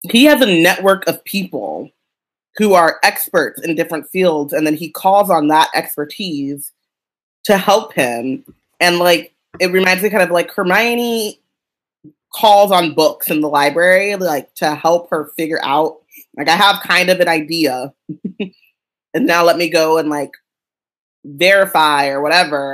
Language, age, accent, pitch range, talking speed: English, 20-39, American, 150-185 Hz, 160 wpm